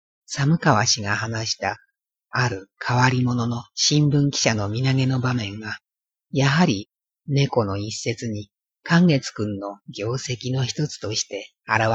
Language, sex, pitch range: Japanese, female, 105-145 Hz